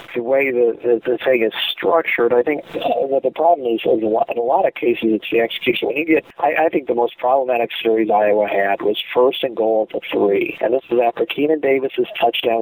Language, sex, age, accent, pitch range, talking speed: English, male, 40-59, American, 115-135 Hz, 240 wpm